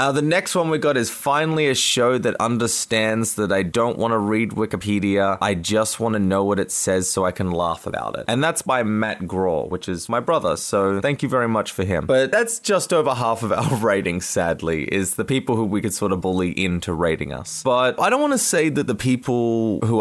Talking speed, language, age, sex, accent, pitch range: 240 wpm, English, 20-39, male, Australian, 100-125 Hz